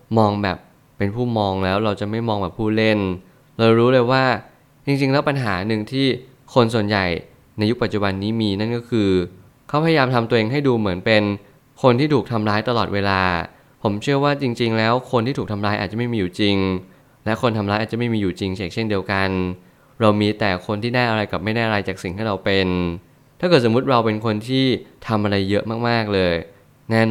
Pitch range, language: 100-125 Hz, Thai